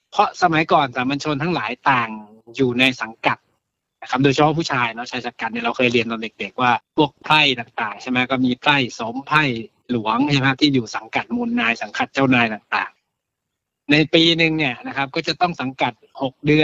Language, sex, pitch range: Thai, male, 125-160 Hz